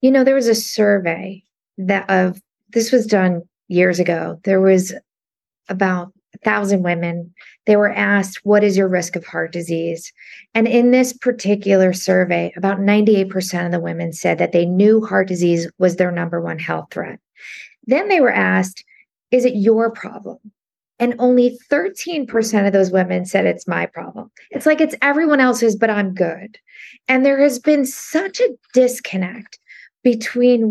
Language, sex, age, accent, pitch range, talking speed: English, female, 40-59, American, 195-245 Hz, 165 wpm